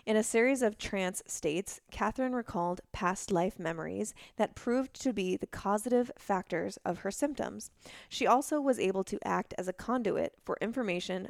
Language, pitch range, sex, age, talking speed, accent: English, 185-220 Hz, female, 20-39, 170 wpm, American